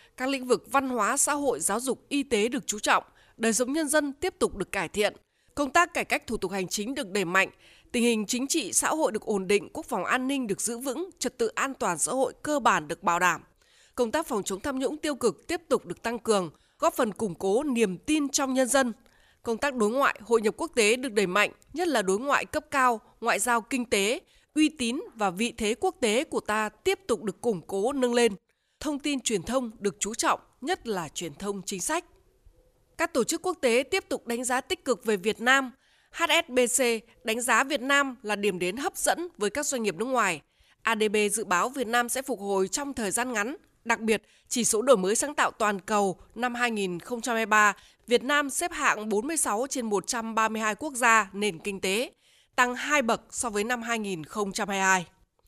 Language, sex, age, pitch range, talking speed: Vietnamese, female, 20-39, 210-275 Hz, 225 wpm